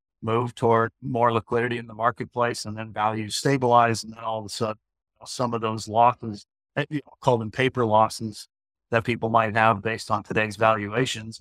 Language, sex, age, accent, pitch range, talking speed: English, male, 50-69, American, 110-120 Hz, 195 wpm